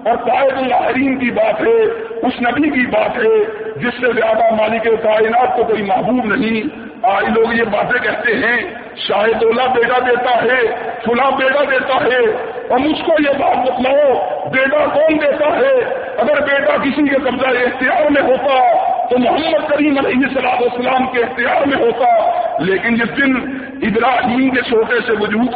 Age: 50-69